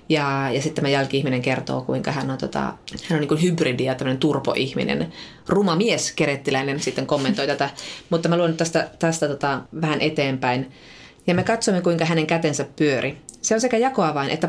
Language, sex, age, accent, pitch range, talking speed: Finnish, female, 30-49, native, 135-175 Hz, 170 wpm